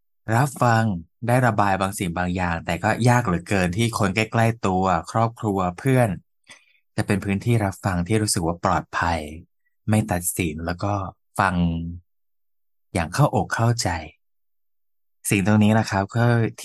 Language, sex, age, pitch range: Thai, male, 20-39, 90-110 Hz